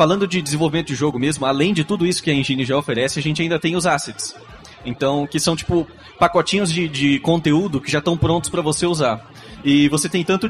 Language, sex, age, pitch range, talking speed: Portuguese, male, 20-39, 135-170 Hz, 230 wpm